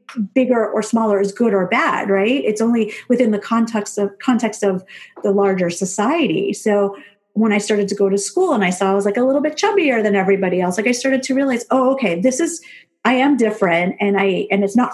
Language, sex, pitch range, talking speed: English, female, 195-245 Hz, 230 wpm